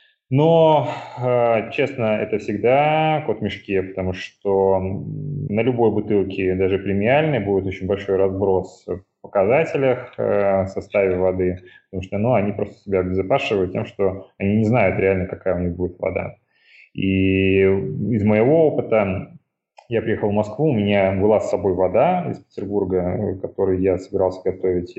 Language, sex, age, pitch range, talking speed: Russian, male, 20-39, 95-115 Hz, 150 wpm